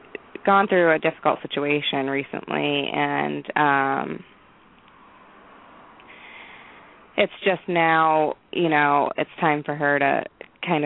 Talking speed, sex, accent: 105 wpm, female, American